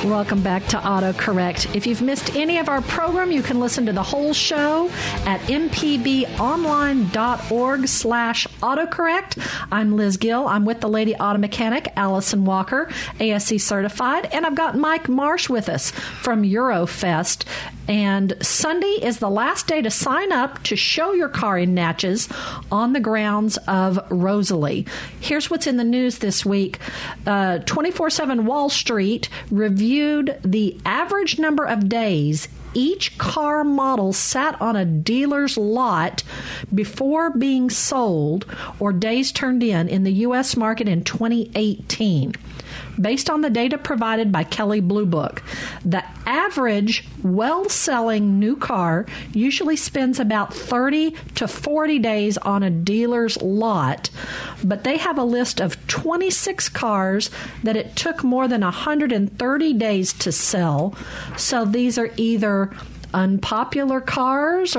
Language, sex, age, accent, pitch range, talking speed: English, female, 50-69, American, 200-275 Hz, 140 wpm